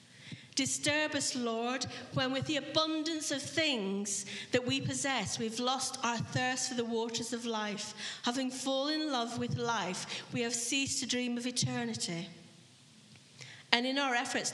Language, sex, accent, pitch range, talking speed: English, female, British, 195-255 Hz, 155 wpm